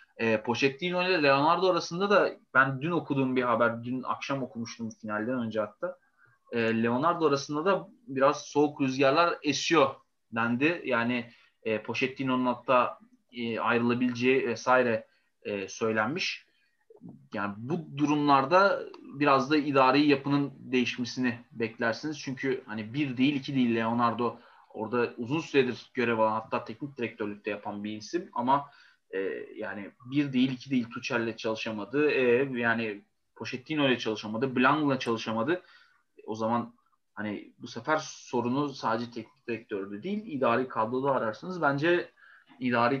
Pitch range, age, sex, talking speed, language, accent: 115-145 Hz, 30-49, male, 125 wpm, Turkish, native